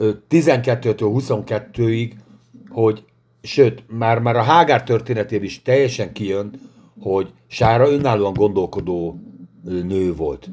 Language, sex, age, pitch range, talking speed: Hungarian, male, 60-79, 110-140 Hz, 95 wpm